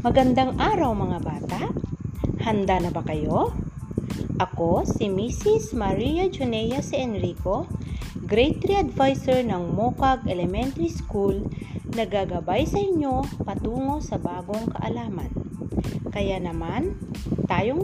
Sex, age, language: female, 40-59, Filipino